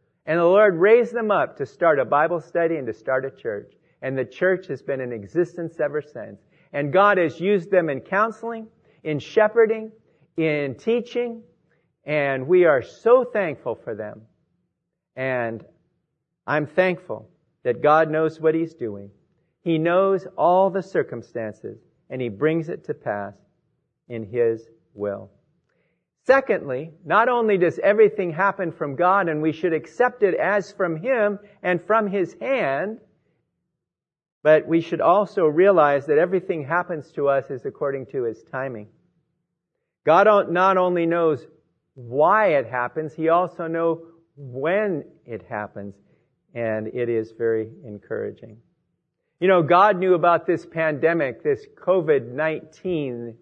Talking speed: 145 wpm